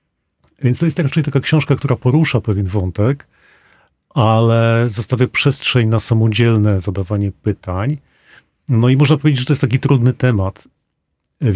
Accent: native